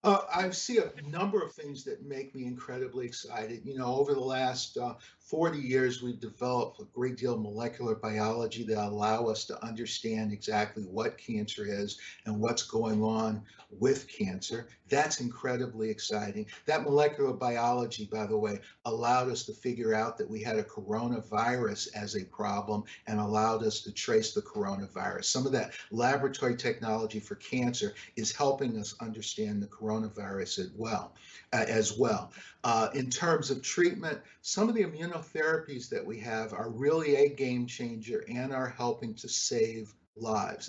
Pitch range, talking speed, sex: 110-135 Hz, 165 wpm, male